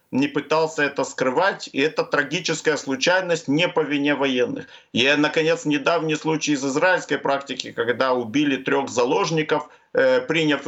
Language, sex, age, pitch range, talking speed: Ukrainian, male, 50-69, 140-180 Hz, 135 wpm